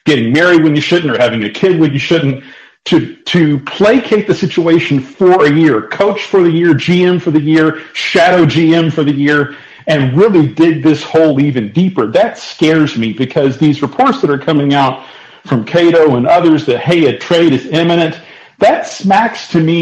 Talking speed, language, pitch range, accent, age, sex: 195 wpm, English, 145-180 Hz, American, 40-59, male